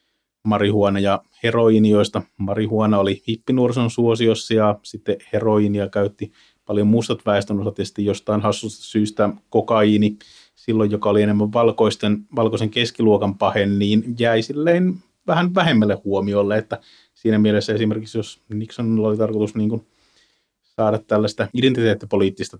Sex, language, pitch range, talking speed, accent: male, Finnish, 100-115 Hz, 120 wpm, native